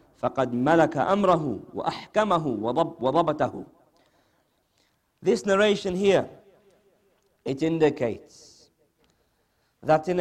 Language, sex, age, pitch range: English, male, 50-69, 130-185 Hz